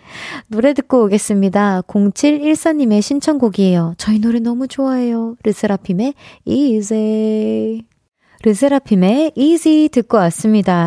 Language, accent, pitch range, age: Korean, native, 200-285 Hz, 20-39